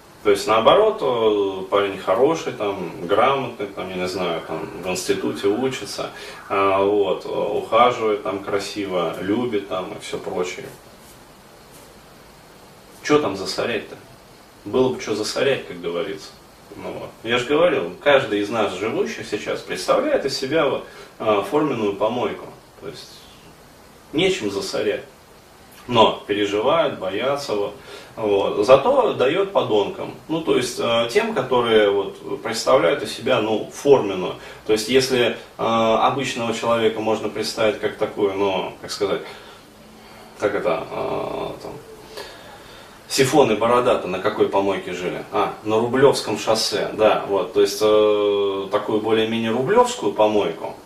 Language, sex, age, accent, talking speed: Russian, male, 20-39, native, 130 wpm